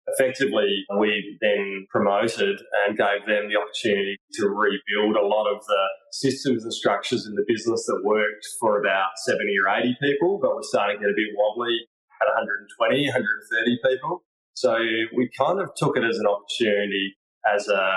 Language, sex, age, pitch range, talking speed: English, male, 20-39, 105-135 Hz, 175 wpm